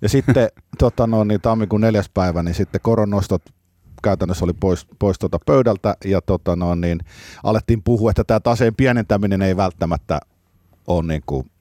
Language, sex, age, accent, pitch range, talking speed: Finnish, male, 50-69, native, 85-105 Hz, 160 wpm